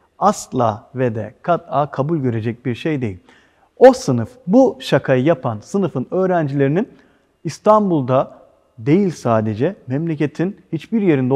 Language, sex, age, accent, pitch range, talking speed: Turkish, male, 40-59, native, 130-180 Hz, 115 wpm